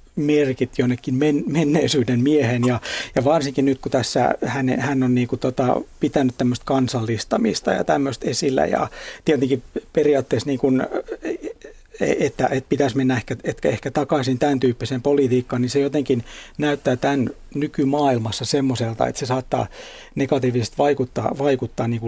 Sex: male